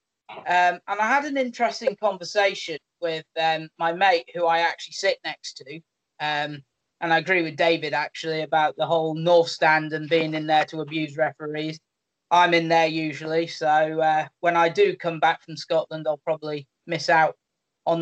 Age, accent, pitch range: 30-49, British, 155-190 Hz